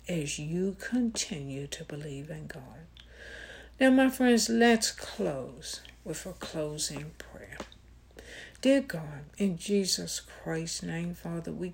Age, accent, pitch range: 60-79, American, 145-210 Hz